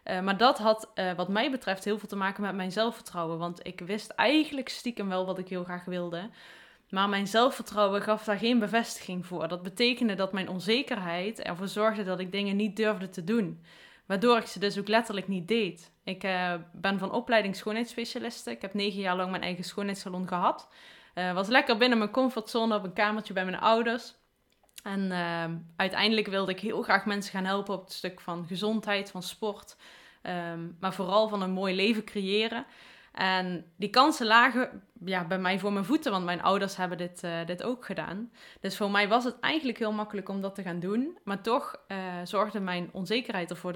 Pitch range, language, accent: 185-225 Hz, Dutch, Dutch